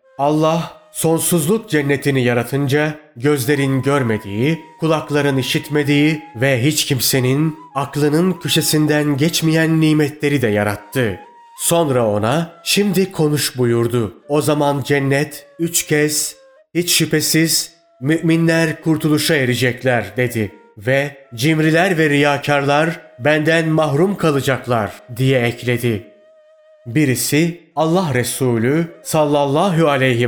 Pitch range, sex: 130-160 Hz, male